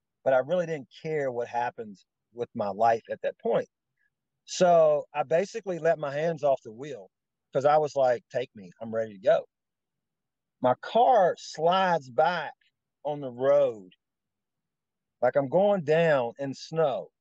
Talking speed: 155 wpm